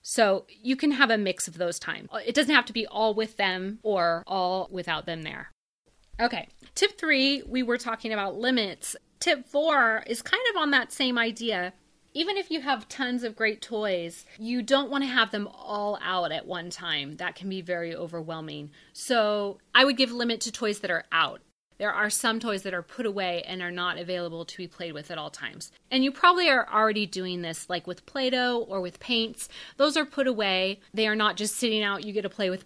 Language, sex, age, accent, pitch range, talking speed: English, female, 30-49, American, 180-230 Hz, 220 wpm